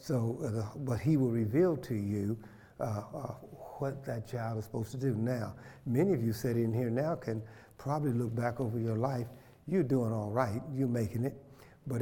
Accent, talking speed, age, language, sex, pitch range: American, 195 wpm, 60-79, English, male, 115-135 Hz